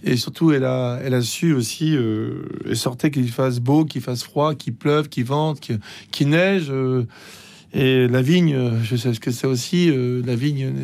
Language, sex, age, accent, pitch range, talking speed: French, male, 40-59, French, 130-165 Hz, 205 wpm